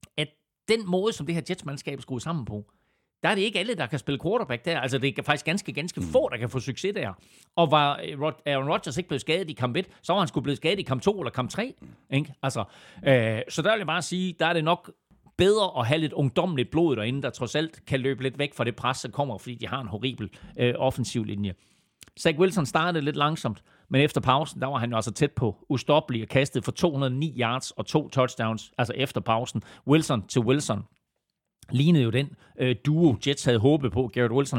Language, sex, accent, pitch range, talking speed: Danish, male, native, 120-150 Hz, 230 wpm